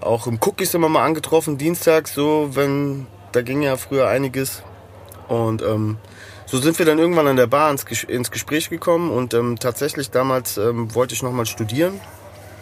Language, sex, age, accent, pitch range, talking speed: German, male, 30-49, German, 105-130 Hz, 175 wpm